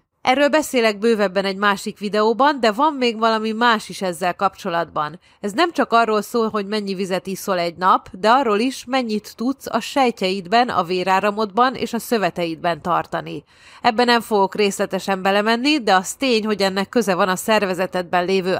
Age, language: 30-49, Hungarian